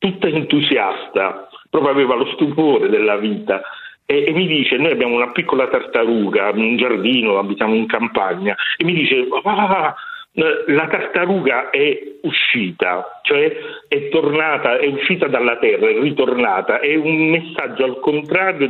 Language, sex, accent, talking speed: Italian, male, native, 140 wpm